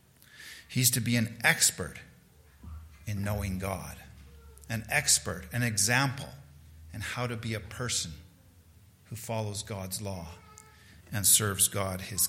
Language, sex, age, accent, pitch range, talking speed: English, male, 50-69, American, 95-125 Hz, 125 wpm